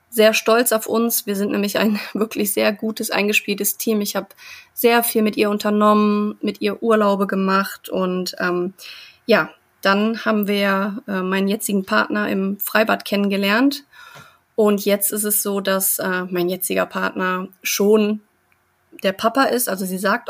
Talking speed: 160 wpm